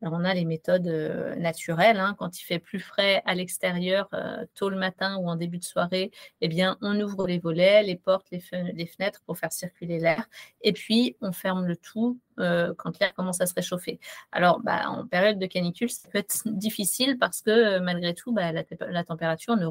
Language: French